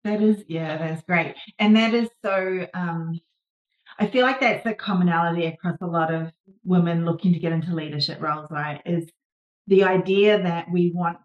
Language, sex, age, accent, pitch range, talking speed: English, female, 30-49, Australian, 165-190 Hz, 180 wpm